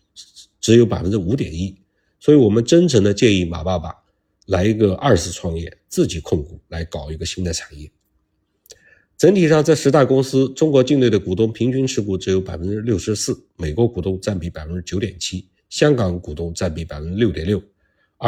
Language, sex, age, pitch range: Chinese, male, 50-69, 85-115 Hz